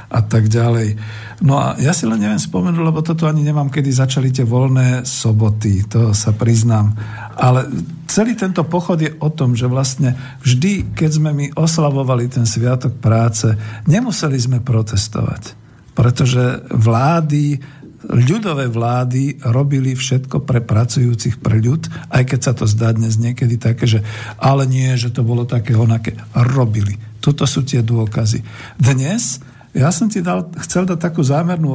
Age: 50-69